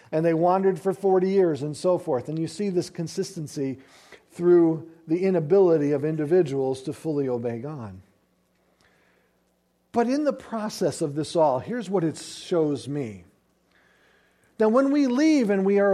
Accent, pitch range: American, 170-220 Hz